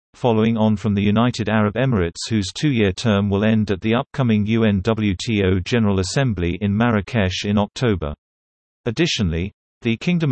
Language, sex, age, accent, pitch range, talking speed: English, male, 40-59, British, 95-115 Hz, 145 wpm